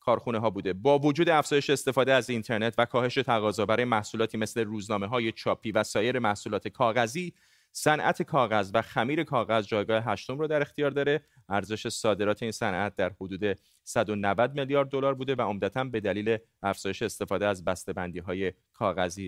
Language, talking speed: Persian, 165 wpm